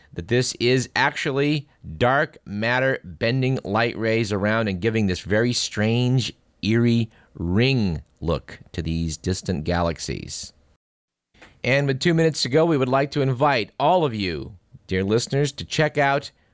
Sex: male